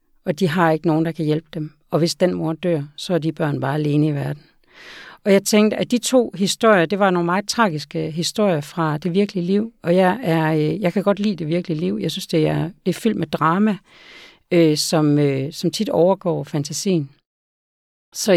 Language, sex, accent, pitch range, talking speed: Danish, female, native, 155-185 Hz, 205 wpm